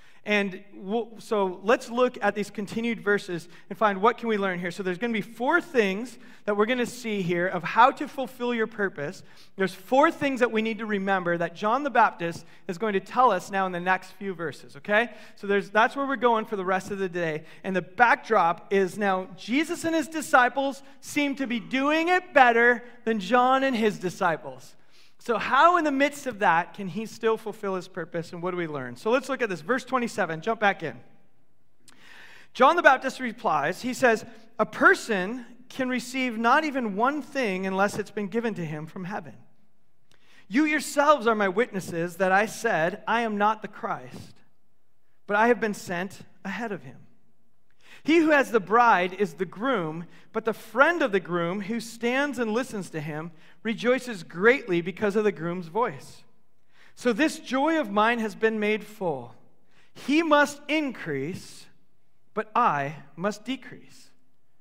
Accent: American